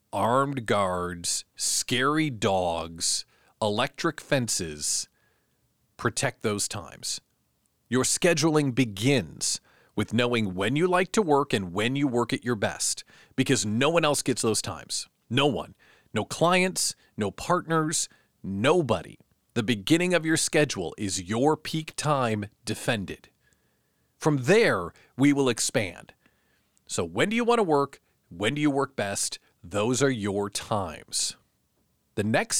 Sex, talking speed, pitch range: male, 135 wpm, 105-160 Hz